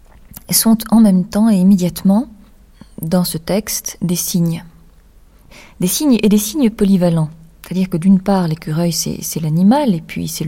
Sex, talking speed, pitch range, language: female, 160 wpm, 170-200 Hz, French